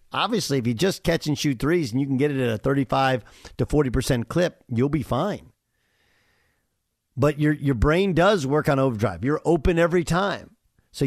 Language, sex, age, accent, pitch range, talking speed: English, male, 50-69, American, 125-170 Hz, 195 wpm